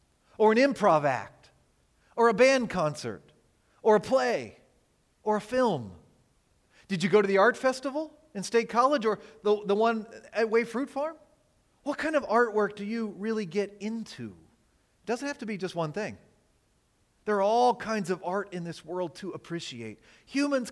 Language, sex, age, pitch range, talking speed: English, male, 40-59, 175-240 Hz, 175 wpm